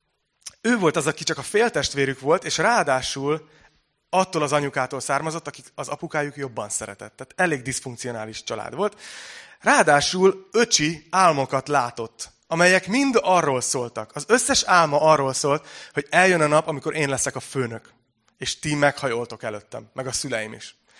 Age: 30-49